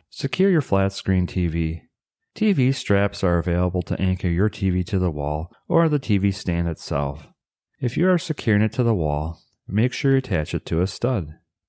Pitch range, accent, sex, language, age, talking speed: 85-125 Hz, American, male, English, 40-59, 190 wpm